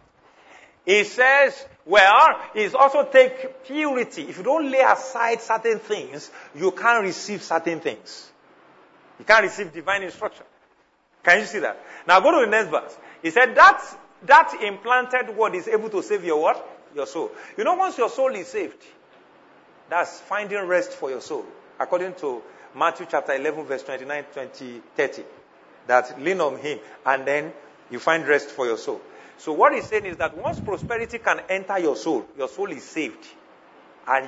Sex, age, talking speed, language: male, 40-59, 175 wpm, English